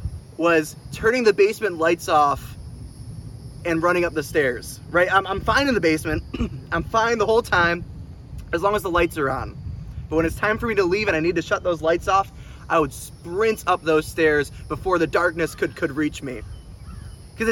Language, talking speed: English, 205 wpm